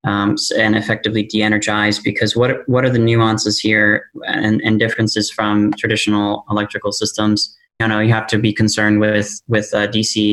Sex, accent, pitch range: male, American, 110-125 Hz